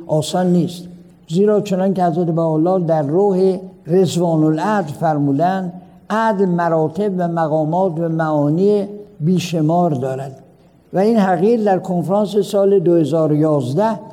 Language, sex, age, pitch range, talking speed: Persian, male, 60-79, 160-190 Hz, 115 wpm